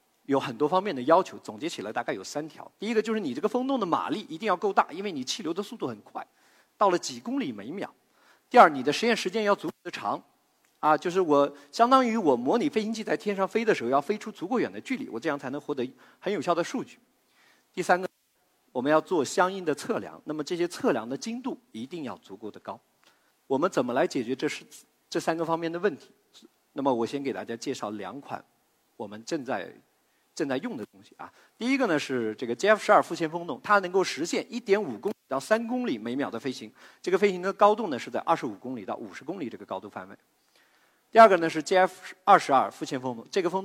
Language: Chinese